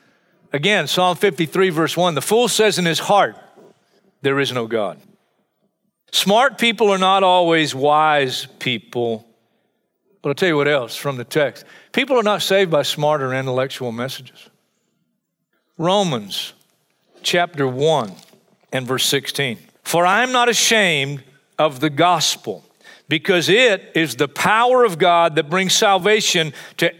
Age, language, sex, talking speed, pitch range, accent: 50-69, English, male, 140 wpm, 160-210 Hz, American